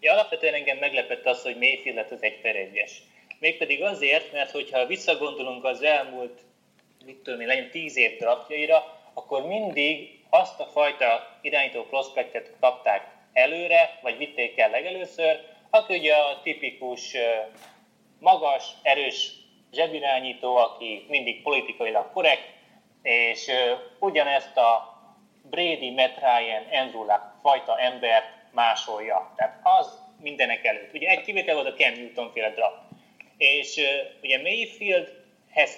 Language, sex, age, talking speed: Hungarian, male, 30-49, 120 wpm